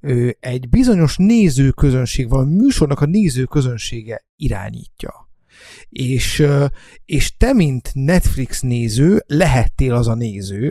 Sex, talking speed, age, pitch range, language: male, 100 wpm, 30-49, 120-145 Hz, Hungarian